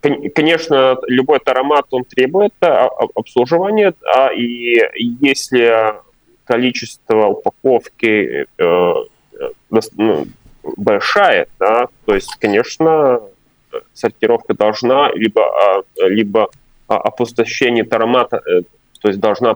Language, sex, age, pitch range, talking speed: Russian, male, 20-39, 115-165 Hz, 75 wpm